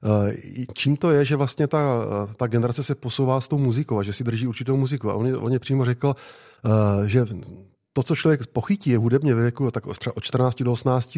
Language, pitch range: Czech, 110-130 Hz